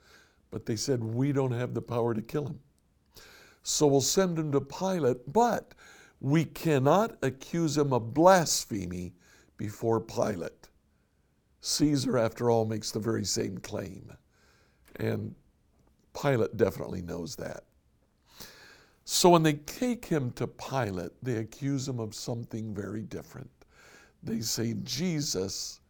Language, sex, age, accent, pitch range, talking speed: English, male, 60-79, American, 95-140 Hz, 130 wpm